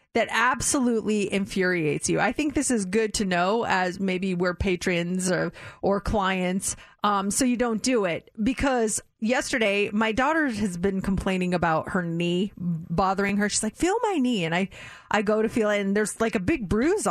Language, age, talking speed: English, 30-49, 190 wpm